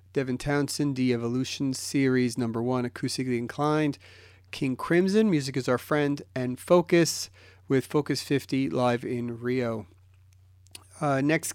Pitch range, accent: 115-140 Hz, American